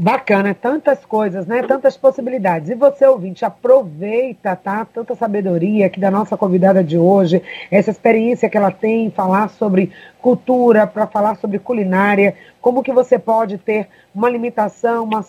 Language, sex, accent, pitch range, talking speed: Portuguese, female, Brazilian, 205-250 Hz, 155 wpm